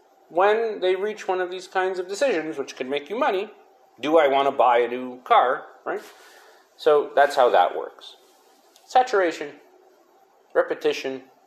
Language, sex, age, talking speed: English, male, 30-49, 155 wpm